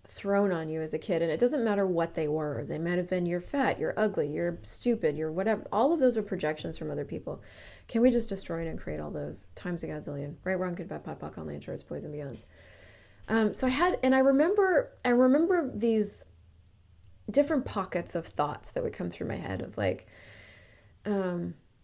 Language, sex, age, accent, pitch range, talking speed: English, female, 30-49, American, 150-225 Hz, 210 wpm